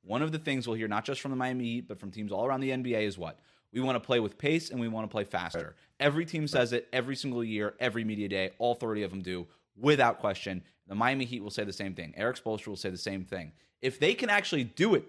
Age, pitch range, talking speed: 30-49, 120-145 Hz, 280 wpm